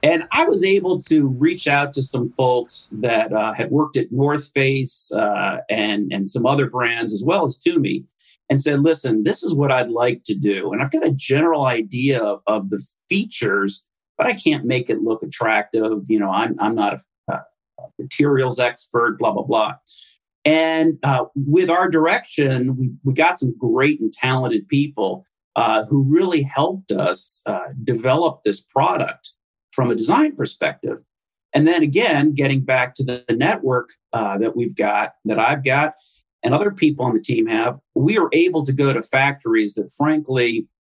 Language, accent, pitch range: English, American, 120-155 Hz